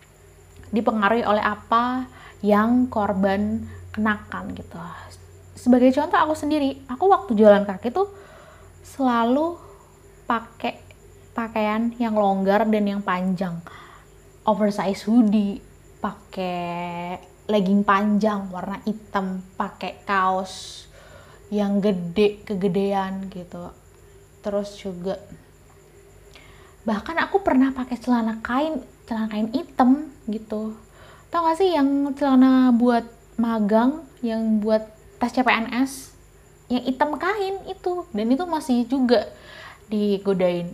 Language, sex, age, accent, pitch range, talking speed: Indonesian, female, 20-39, native, 195-245 Hz, 100 wpm